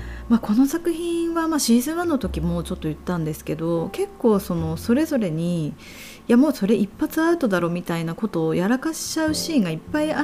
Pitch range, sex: 165-255 Hz, female